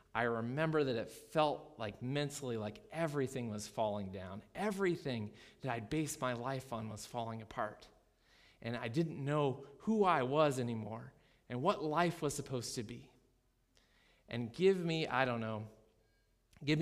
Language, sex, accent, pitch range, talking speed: English, male, American, 120-175 Hz, 155 wpm